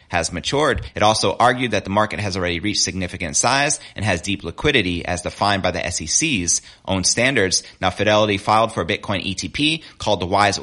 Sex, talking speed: male, 190 wpm